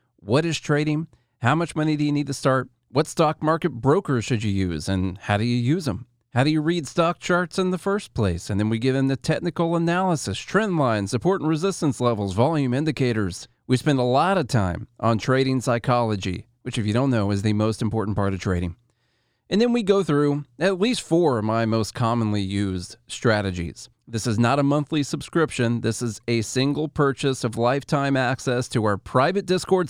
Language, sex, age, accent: English, male, 40-59, American